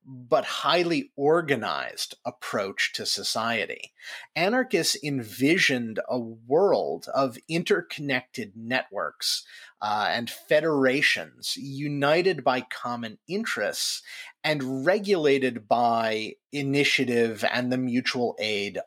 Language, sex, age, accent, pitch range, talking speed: English, male, 30-49, American, 115-165 Hz, 90 wpm